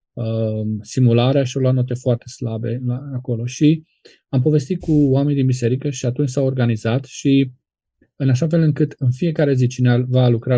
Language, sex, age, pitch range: Romanian, male, 20-39, 120-145 Hz